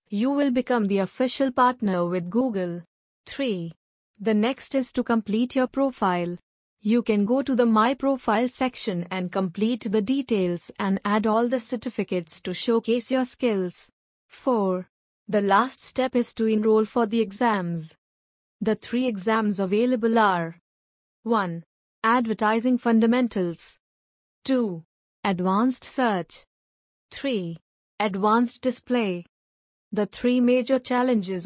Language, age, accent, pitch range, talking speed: English, 30-49, Indian, 185-250 Hz, 125 wpm